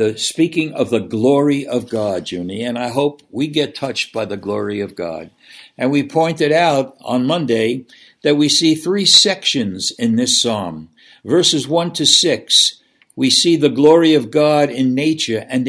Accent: American